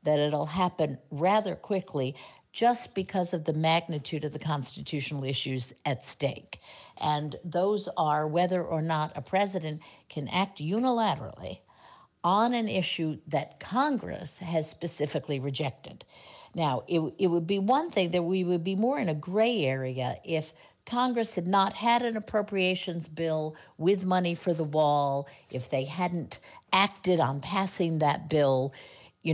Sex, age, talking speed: female, 60-79, 150 wpm